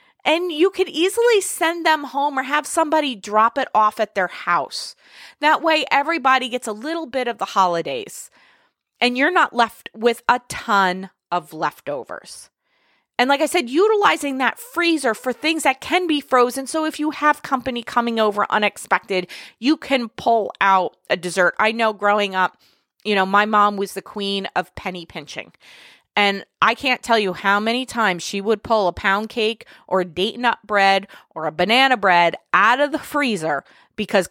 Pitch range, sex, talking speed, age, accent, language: 185-255 Hz, female, 180 wpm, 30-49, American, English